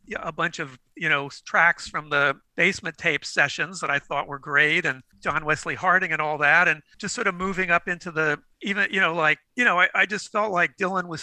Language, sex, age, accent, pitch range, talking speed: English, male, 50-69, American, 160-195 Hz, 235 wpm